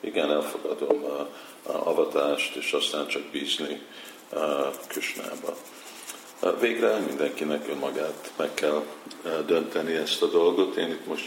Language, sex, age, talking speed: Hungarian, male, 50-69, 110 wpm